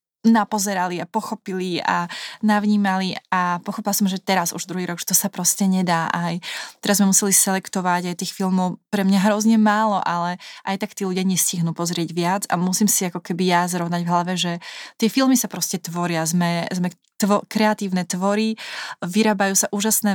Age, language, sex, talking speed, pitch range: 20-39, Slovak, female, 180 wpm, 175-205 Hz